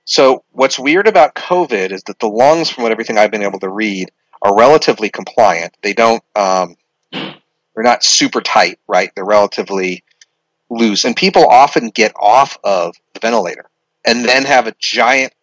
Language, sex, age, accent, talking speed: English, male, 40-59, American, 170 wpm